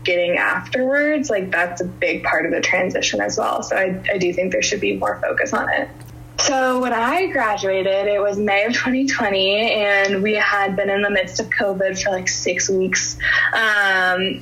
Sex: female